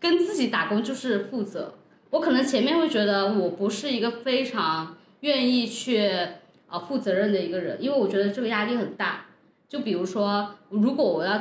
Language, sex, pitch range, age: Chinese, female, 200-265 Hz, 20-39